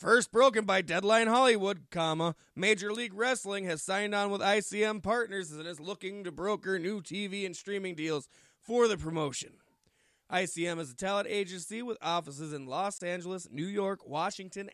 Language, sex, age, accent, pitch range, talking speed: English, male, 20-39, American, 150-200 Hz, 165 wpm